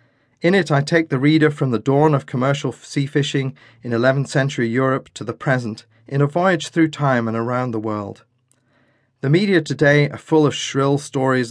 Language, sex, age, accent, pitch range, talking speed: English, male, 40-59, British, 120-145 Hz, 195 wpm